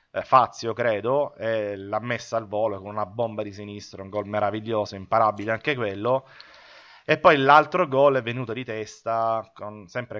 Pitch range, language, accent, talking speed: 105-130 Hz, Italian, native, 165 wpm